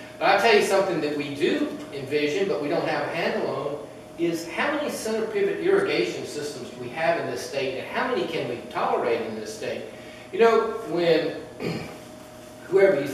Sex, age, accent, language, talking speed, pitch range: male, 40-59, American, English, 195 wpm, 150-235 Hz